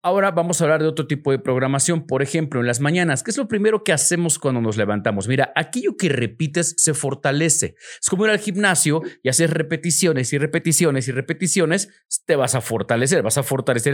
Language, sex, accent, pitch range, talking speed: Spanish, male, Mexican, 125-170 Hz, 205 wpm